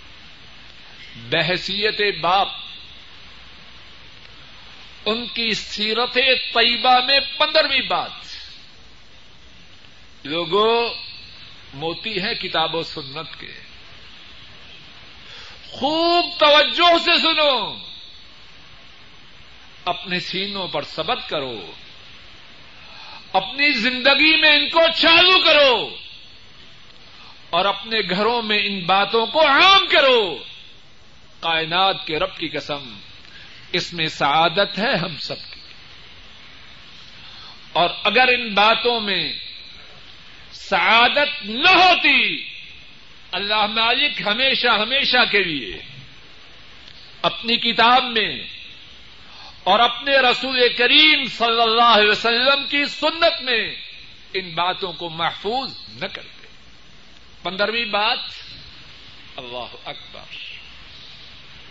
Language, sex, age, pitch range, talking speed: Urdu, male, 50-69, 175-270 Hz, 90 wpm